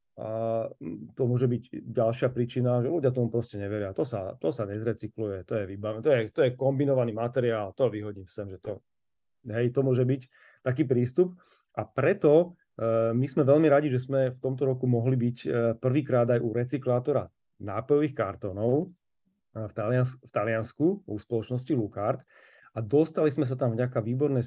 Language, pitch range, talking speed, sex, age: Slovak, 115-135 Hz, 160 wpm, male, 30-49